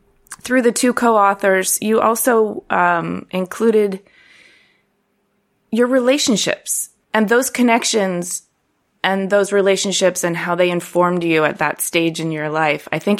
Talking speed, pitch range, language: 130 wpm, 155-205 Hz, English